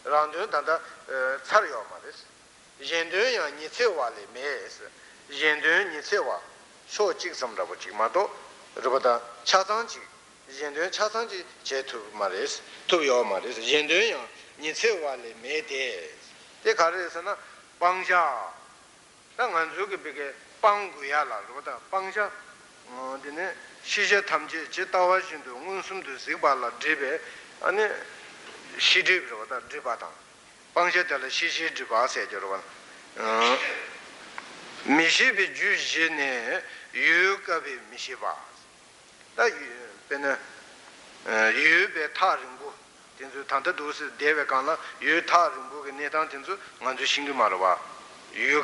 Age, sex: 60-79, male